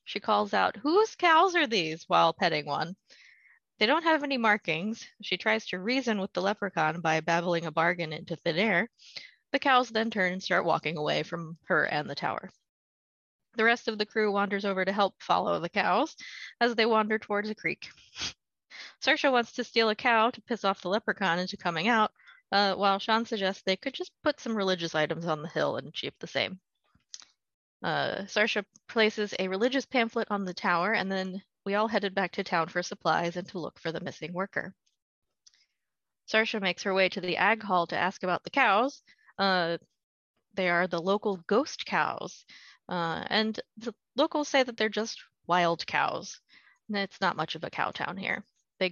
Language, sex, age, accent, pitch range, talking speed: English, female, 20-39, American, 175-225 Hz, 195 wpm